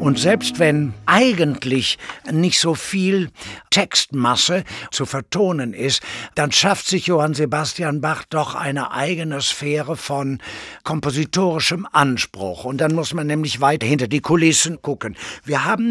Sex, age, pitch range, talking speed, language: male, 60-79, 120-165 Hz, 135 wpm, German